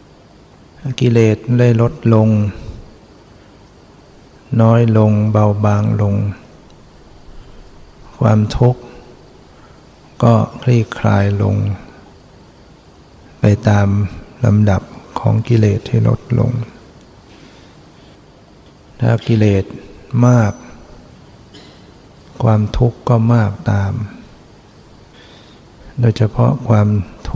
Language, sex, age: Thai, male, 60-79